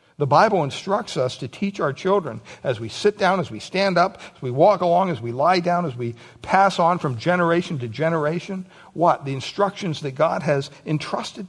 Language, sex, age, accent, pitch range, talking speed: English, male, 60-79, American, 130-175 Hz, 205 wpm